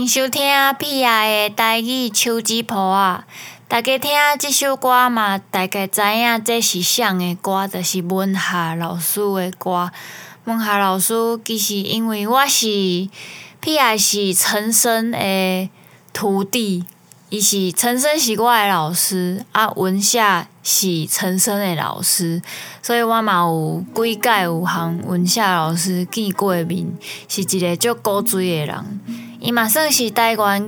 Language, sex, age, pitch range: Chinese, female, 20-39, 185-230 Hz